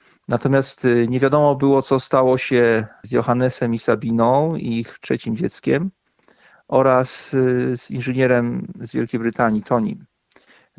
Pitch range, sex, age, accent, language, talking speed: 120-135 Hz, male, 40-59, native, Polish, 120 wpm